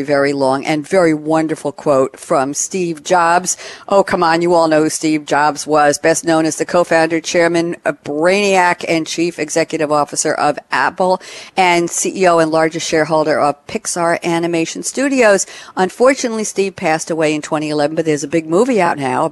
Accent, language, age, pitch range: American, English, 60-79, 155-195 Hz